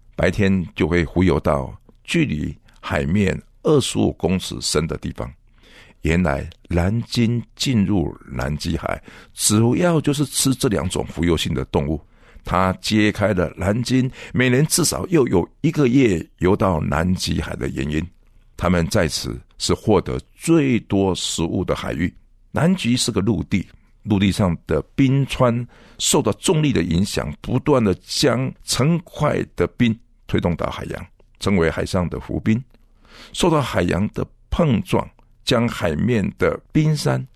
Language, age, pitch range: Chinese, 60-79, 85-115 Hz